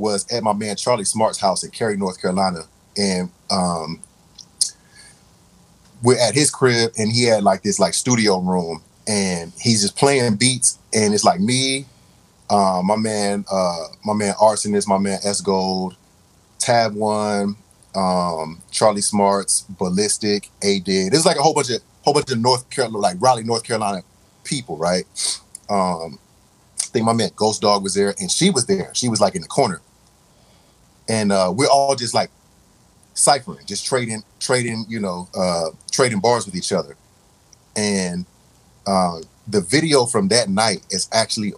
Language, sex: English, male